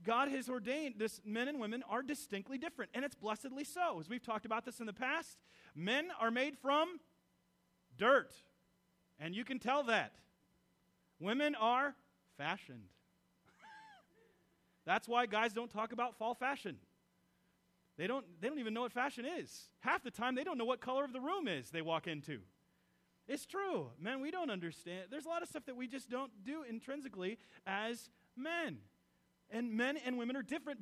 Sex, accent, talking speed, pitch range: male, American, 175 wpm, 200-265 Hz